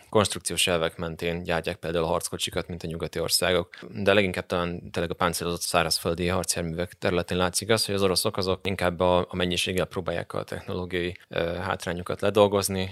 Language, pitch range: Hungarian, 85-95 Hz